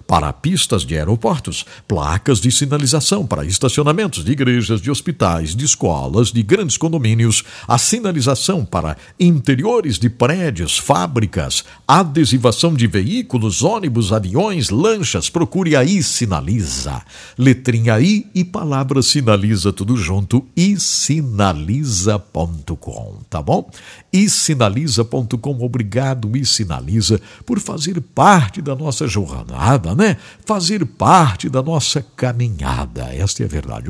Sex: male